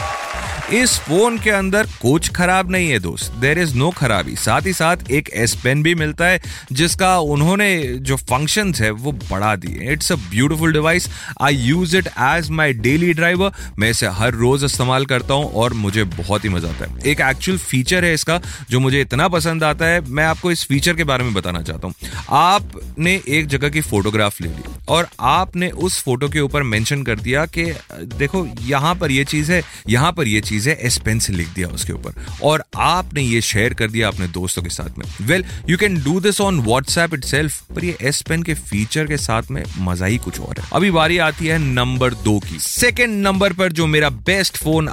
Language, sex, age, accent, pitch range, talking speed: Hindi, male, 30-49, native, 110-165 Hz, 190 wpm